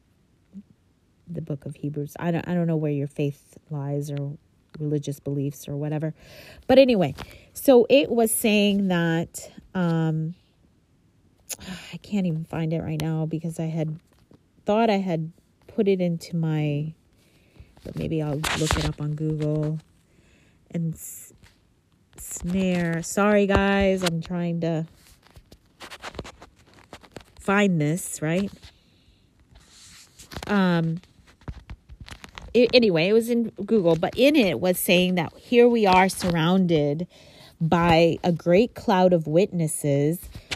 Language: English